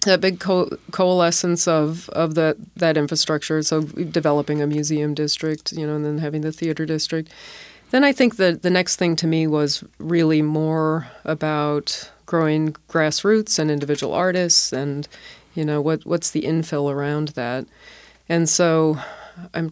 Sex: female